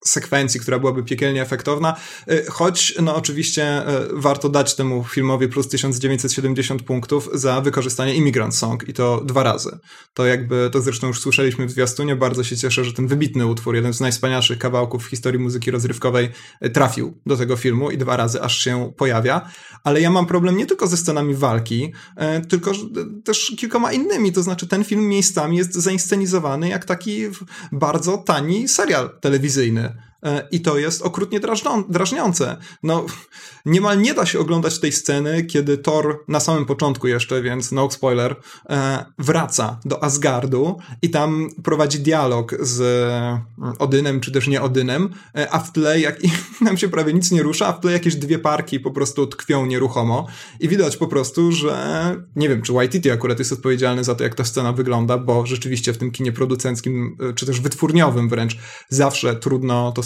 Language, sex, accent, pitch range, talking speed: Polish, male, native, 125-165 Hz, 165 wpm